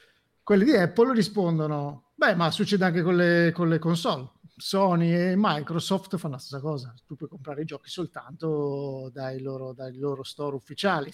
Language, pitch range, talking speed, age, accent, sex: Italian, 155-205 Hz, 170 wpm, 50-69, native, male